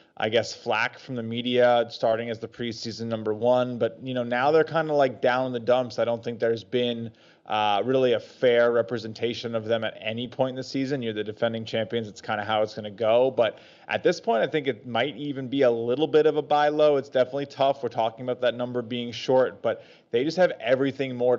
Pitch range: 120-140 Hz